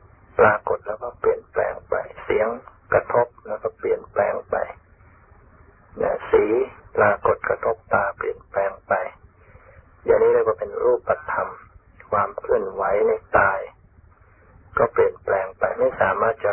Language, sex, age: Thai, male, 60-79